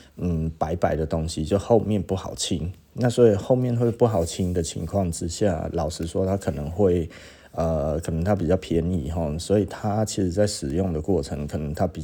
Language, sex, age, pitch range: Chinese, male, 20-39, 80-95 Hz